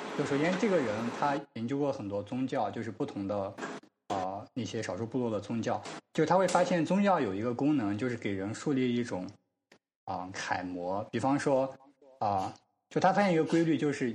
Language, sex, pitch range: Chinese, male, 105-145 Hz